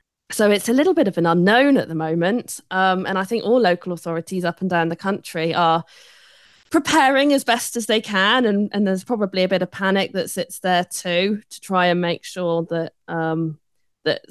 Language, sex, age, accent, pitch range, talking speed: English, female, 20-39, British, 160-190 Hz, 205 wpm